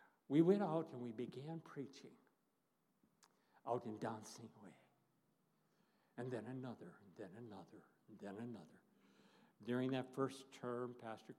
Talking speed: 130 wpm